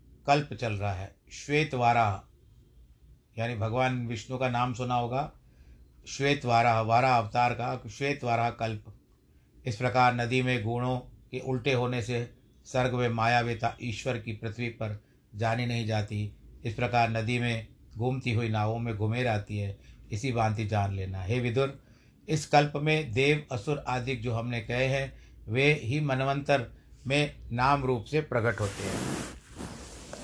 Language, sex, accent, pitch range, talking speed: Hindi, male, native, 115-140 Hz, 150 wpm